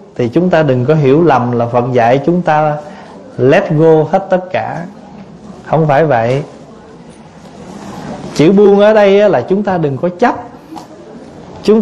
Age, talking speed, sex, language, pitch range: 20-39, 155 wpm, male, Vietnamese, 150-205 Hz